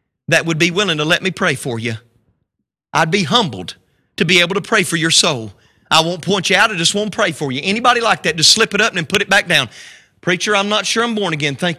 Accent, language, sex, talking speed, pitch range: American, English, male, 265 wpm, 145-210 Hz